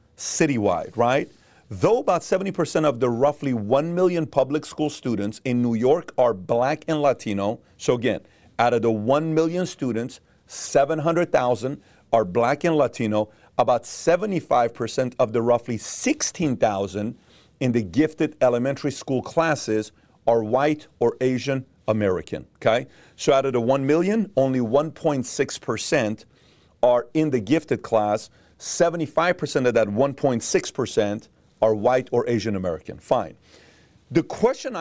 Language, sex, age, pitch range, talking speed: English, male, 40-59, 120-150 Hz, 130 wpm